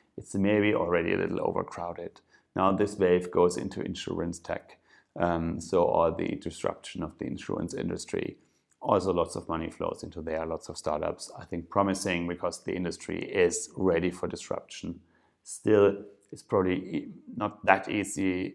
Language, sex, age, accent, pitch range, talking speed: English, male, 30-49, German, 80-90 Hz, 155 wpm